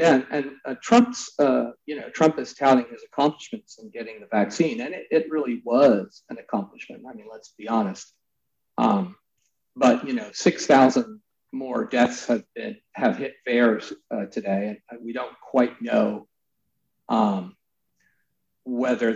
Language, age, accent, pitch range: English, 50-69, American, 115-170 Hz